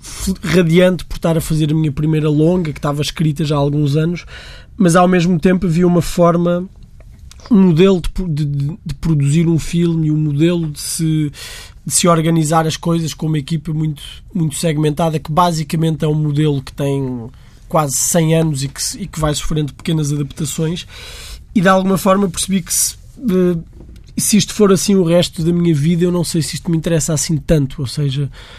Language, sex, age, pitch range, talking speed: Portuguese, male, 20-39, 150-180 Hz, 195 wpm